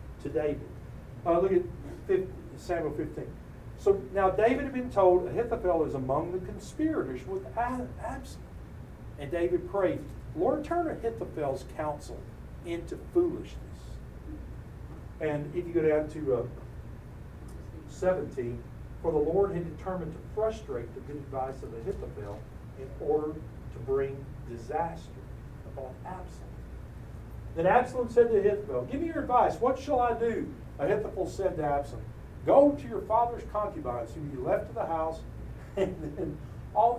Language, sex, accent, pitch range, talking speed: English, male, American, 135-210 Hz, 145 wpm